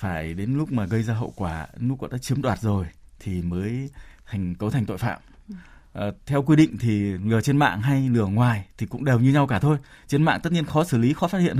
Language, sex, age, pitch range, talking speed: Vietnamese, male, 20-39, 105-140 Hz, 255 wpm